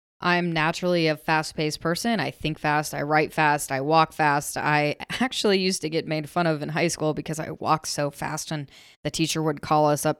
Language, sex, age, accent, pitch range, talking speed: English, female, 20-39, American, 150-175 Hz, 220 wpm